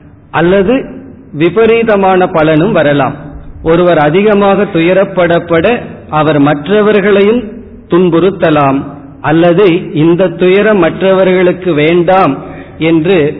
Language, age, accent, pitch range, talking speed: Tamil, 40-59, native, 150-185 Hz, 70 wpm